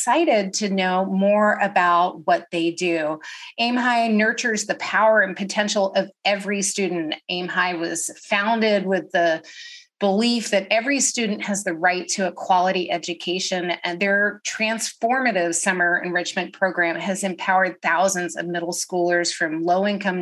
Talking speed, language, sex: 150 wpm, English, female